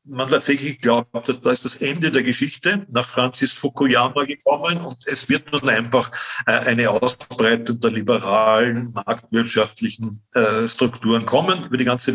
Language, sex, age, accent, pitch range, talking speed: German, male, 50-69, German, 120-140 Hz, 140 wpm